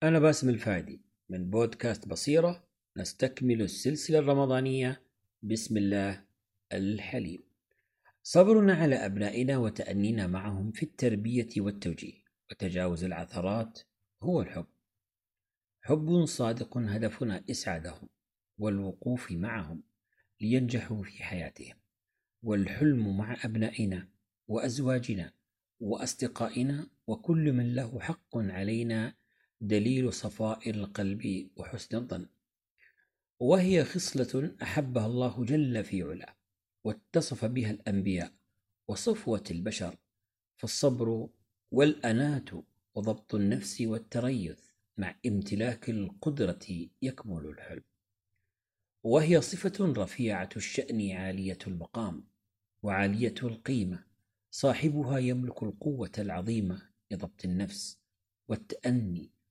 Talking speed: 85 wpm